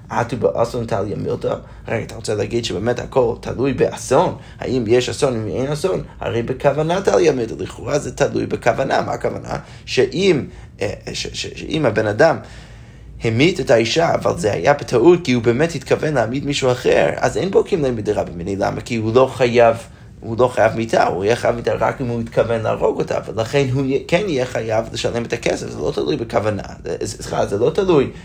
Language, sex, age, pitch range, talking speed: Hebrew, male, 30-49, 115-135 Hz, 185 wpm